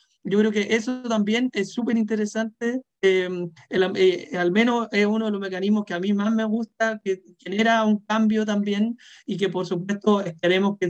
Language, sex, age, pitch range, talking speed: Spanish, male, 40-59, 185-225 Hz, 195 wpm